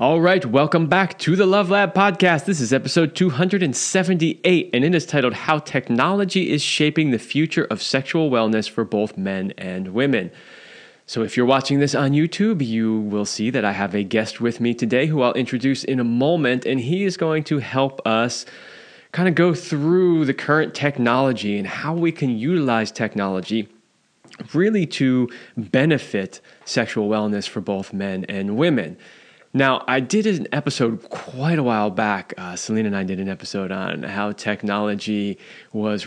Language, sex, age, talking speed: English, male, 20-39, 175 wpm